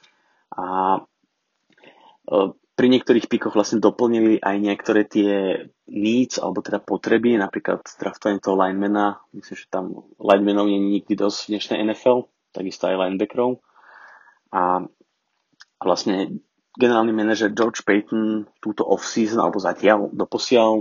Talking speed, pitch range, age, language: 120 wpm, 100-110 Hz, 20-39, Slovak